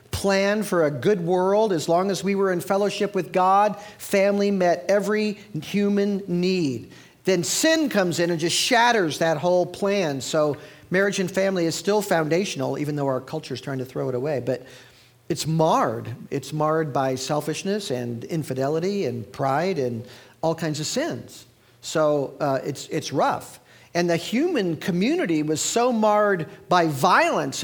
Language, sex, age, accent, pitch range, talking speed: English, male, 50-69, American, 125-175 Hz, 165 wpm